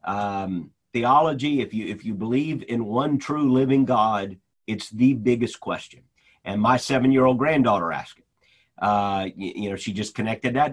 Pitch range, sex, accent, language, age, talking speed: 115-155 Hz, male, American, English, 50-69, 180 wpm